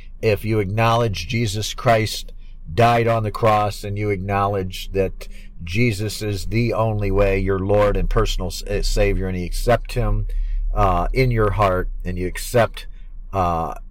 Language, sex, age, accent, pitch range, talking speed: English, male, 50-69, American, 95-110 Hz, 150 wpm